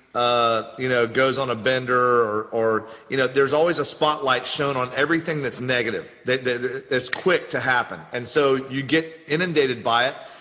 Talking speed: 200 wpm